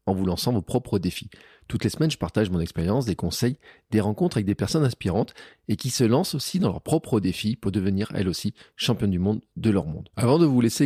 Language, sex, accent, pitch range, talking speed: French, male, French, 95-125 Hz, 245 wpm